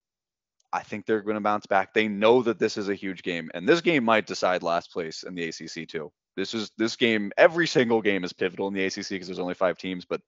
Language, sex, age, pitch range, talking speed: English, male, 20-39, 85-105 Hz, 255 wpm